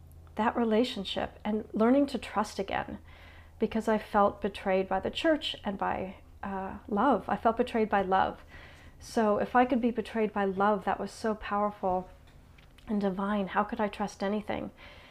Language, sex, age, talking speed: English, female, 40-59, 165 wpm